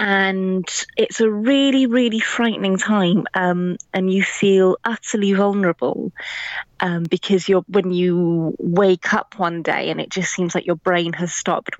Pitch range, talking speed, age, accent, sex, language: 170-200 Hz, 160 wpm, 20-39, British, female, English